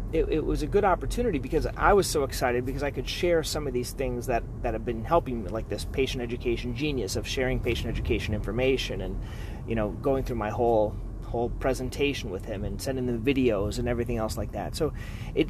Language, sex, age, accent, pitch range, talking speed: English, male, 30-49, American, 110-140 Hz, 220 wpm